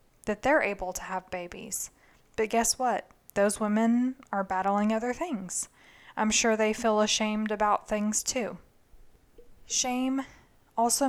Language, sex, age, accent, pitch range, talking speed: English, female, 20-39, American, 195-245 Hz, 135 wpm